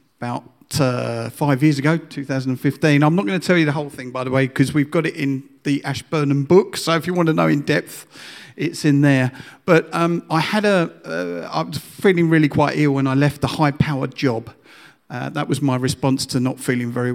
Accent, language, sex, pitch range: British, English, male, 125-145 Hz